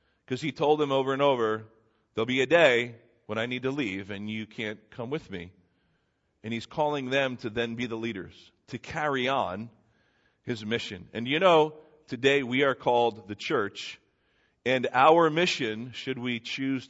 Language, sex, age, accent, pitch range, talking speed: English, male, 40-59, American, 110-145 Hz, 180 wpm